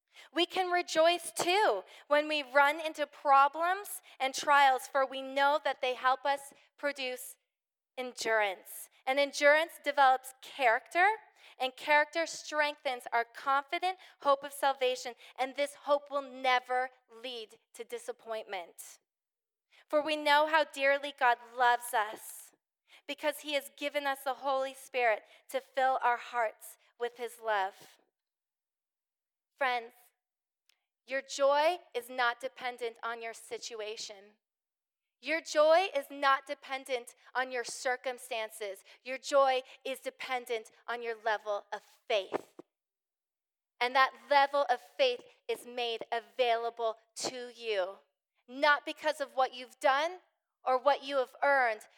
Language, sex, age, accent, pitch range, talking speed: English, female, 30-49, American, 245-290 Hz, 125 wpm